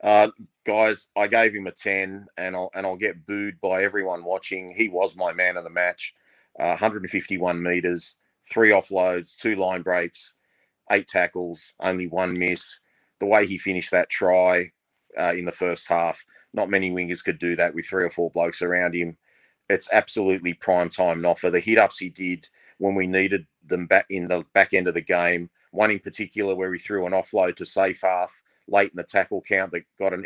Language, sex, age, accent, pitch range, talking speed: English, male, 30-49, Australian, 90-100 Hz, 200 wpm